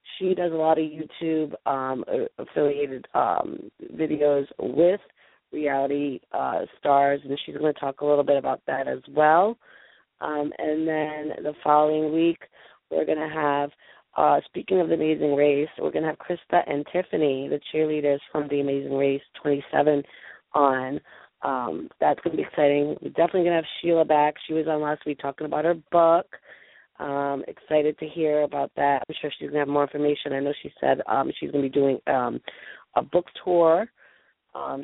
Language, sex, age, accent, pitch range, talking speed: English, female, 30-49, American, 140-155 Hz, 185 wpm